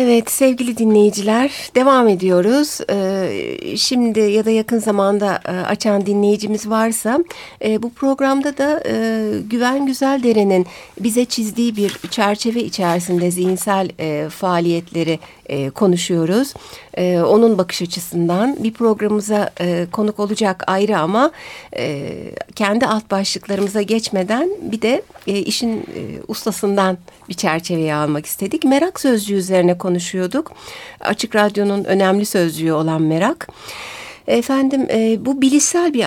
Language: Turkish